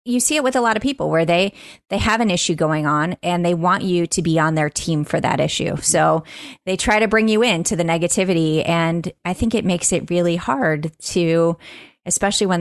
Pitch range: 160-205 Hz